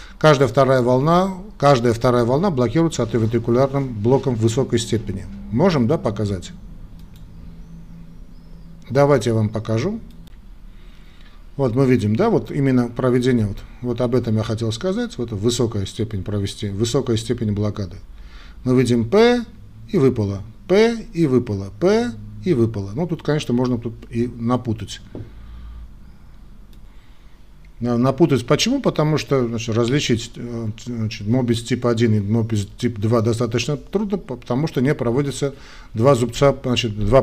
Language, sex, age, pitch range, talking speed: Russian, male, 40-59, 110-140 Hz, 125 wpm